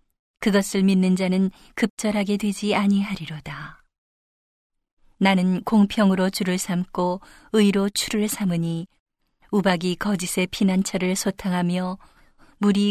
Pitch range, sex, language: 180-205 Hz, female, Korean